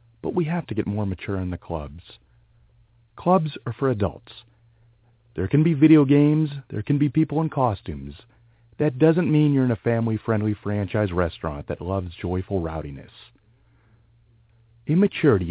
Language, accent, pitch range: English, American, 95-130 Hz